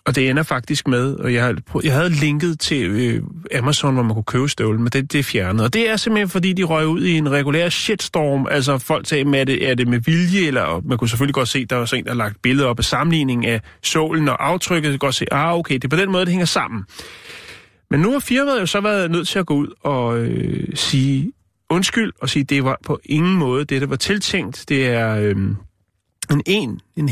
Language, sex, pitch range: Danish, male, 115-155 Hz